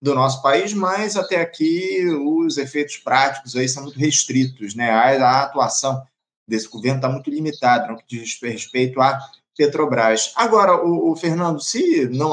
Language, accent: Portuguese, Brazilian